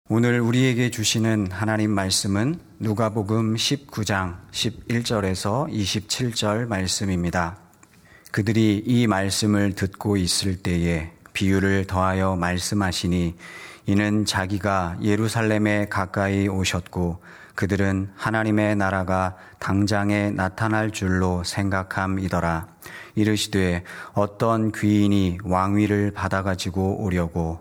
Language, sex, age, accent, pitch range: Korean, male, 40-59, native, 95-105 Hz